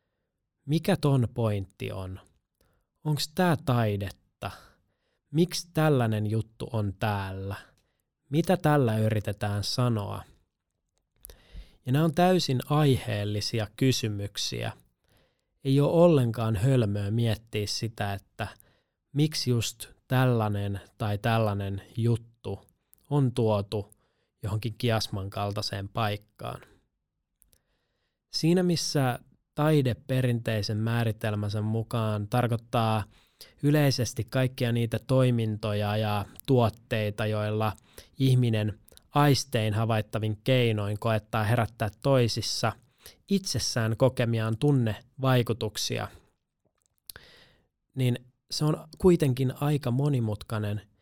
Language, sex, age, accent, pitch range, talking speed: Finnish, male, 20-39, native, 105-130 Hz, 85 wpm